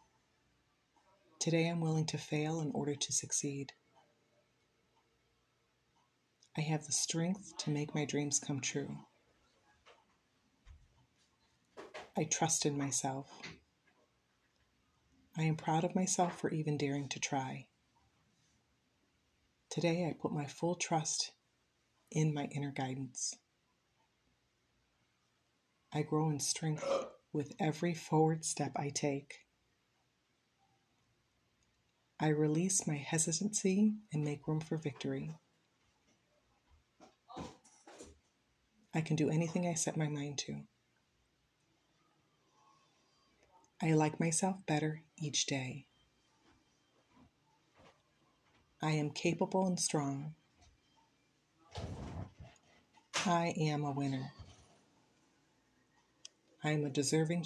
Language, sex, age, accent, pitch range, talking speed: English, female, 30-49, American, 145-165 Hz, 95 wpm